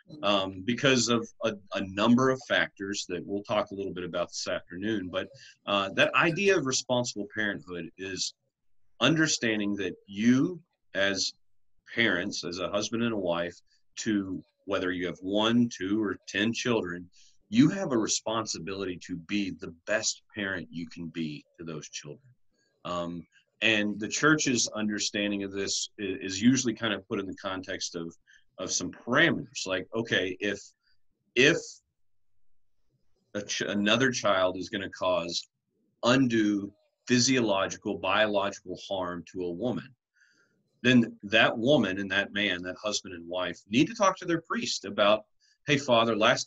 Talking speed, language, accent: 150 wpm, English, American